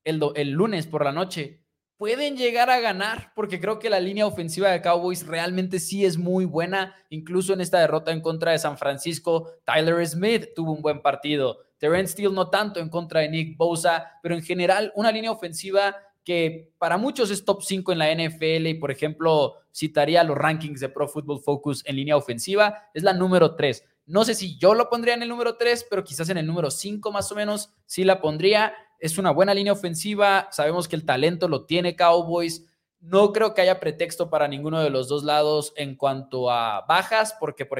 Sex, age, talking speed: male, 20-39, 205 wpm